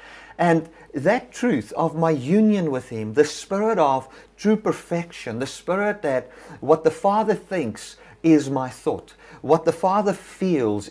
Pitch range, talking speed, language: 125-170 Hz, 150 wpm, English